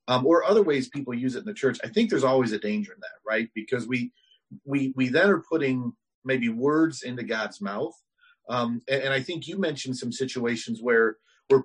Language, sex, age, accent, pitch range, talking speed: English, male, 40-59, American, 120-155 Hz, 215 wpm